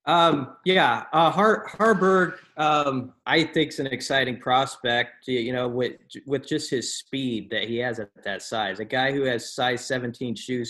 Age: 30-49